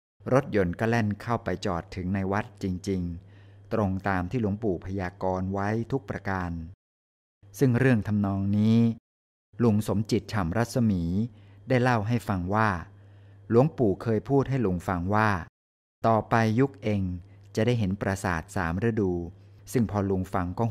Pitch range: 95-115 Hz